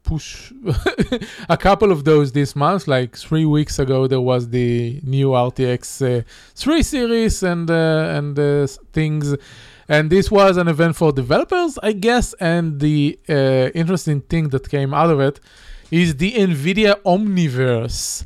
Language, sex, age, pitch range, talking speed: English, male, 20-39, 130-175 Hz, 155 wpm